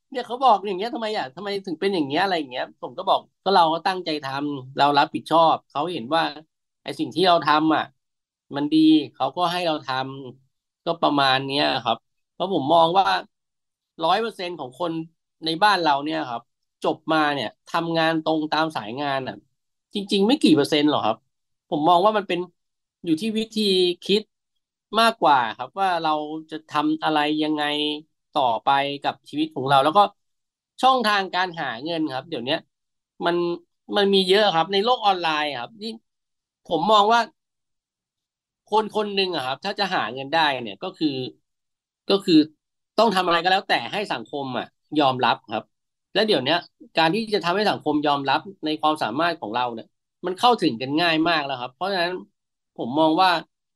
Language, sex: Thai, male